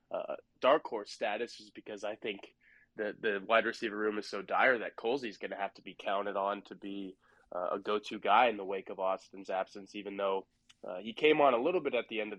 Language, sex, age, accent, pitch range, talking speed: English, male, 20-39, American, 105-120 Hz, 240 wpm